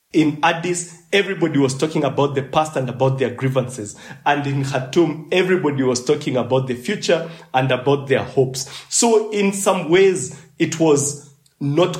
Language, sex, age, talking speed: English, male, 40-59, 160 wpm